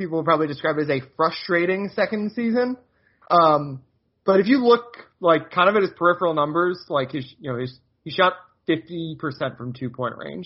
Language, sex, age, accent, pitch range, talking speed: English, male, 30-49, American, 135-175 Hz, 195 wpm